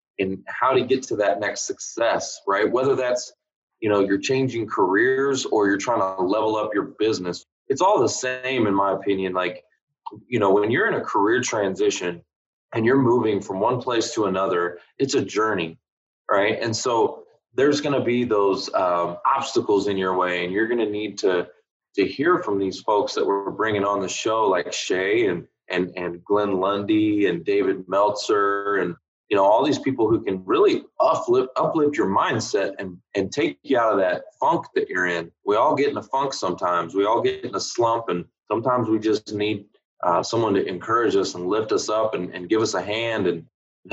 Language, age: English, 20-39